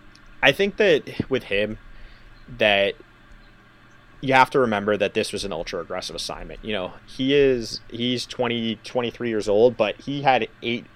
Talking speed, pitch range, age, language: 165 wpm, 95-115 Hz, 30-49, English